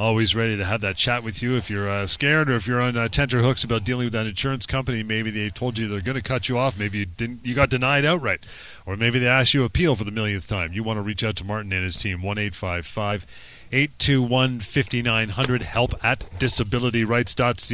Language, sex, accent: English, male, American